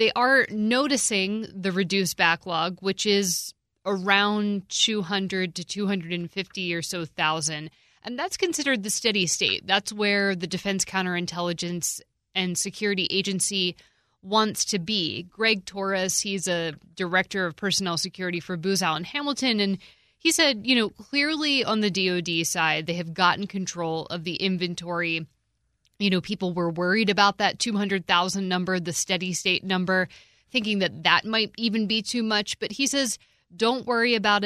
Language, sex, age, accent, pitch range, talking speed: English, female, 20-39, American, 180-220 Hz, 155 wpm